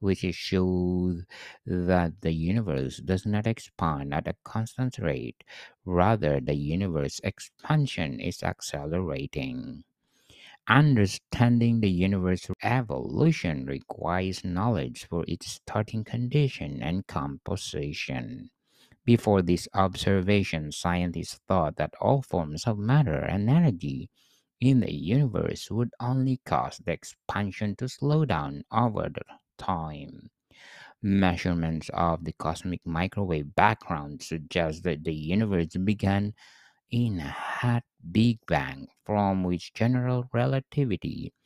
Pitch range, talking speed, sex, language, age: 85-120 Hz, 110 wpm, male, English, 60-79